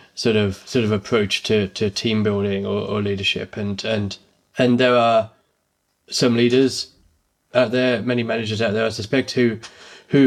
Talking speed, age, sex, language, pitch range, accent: 170 wpm, 20-39, male, English, 105-135 Hz, British